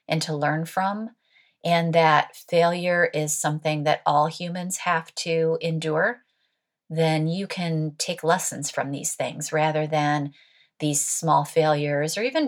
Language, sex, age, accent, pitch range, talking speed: English, female, 30-49, American, 155-180 Hz, 145 wpm